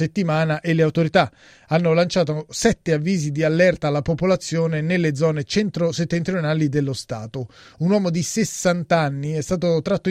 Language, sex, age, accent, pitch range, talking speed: Italian, male, 30-49, native, 110-165 Hz, 150 wpm